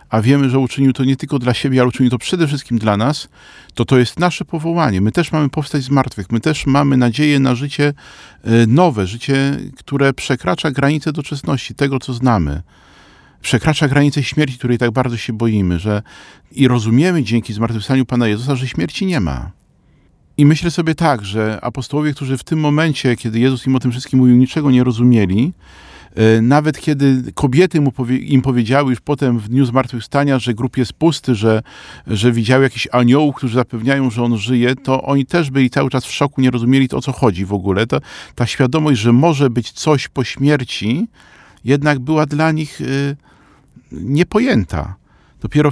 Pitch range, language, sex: 120-145 Hz, Polish, male